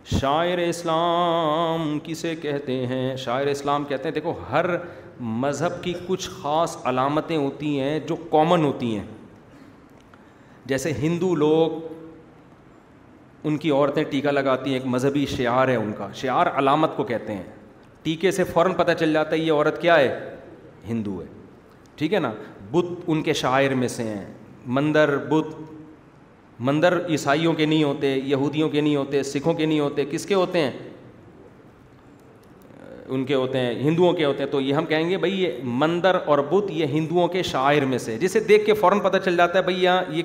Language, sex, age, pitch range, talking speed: Urdu, male, 40-59, 140-170 Hz, 175 wpm